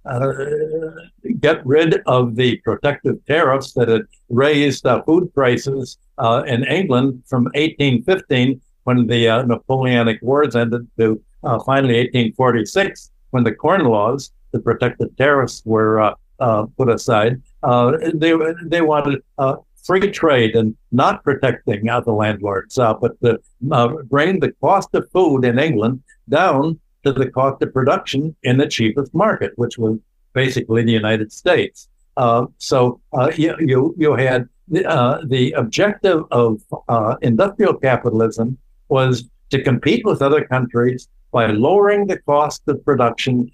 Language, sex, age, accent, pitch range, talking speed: English, male, 60-79, American, 115-145 Hz, 145 wpm